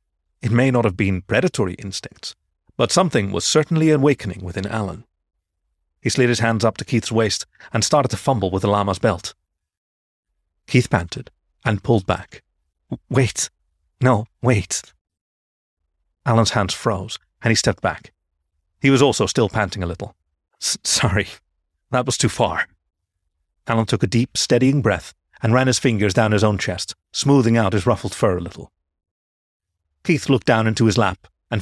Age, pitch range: 40-59, 80-115 Hz